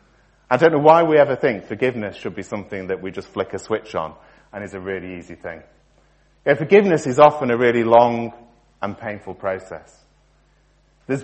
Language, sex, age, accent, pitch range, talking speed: English, male, 30-49, British, 100-135 Hz, 185 wpm